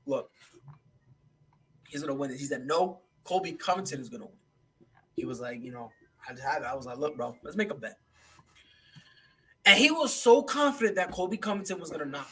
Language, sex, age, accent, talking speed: English, male, 20-39, American, 200 wpm